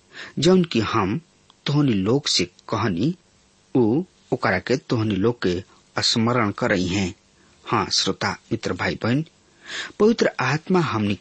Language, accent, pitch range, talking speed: English, Indian, 95-145 Hz, 120 wpm